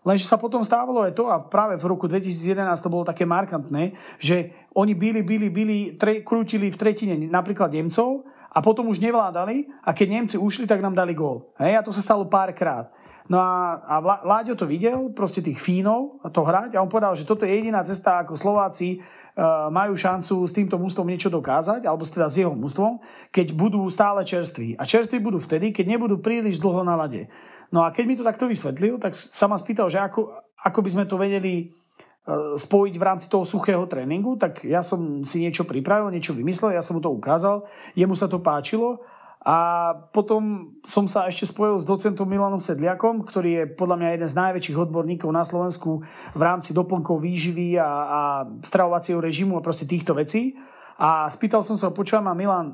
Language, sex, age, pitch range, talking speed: Slovak, male, 30-49, 170-205 Hz, 190 wpm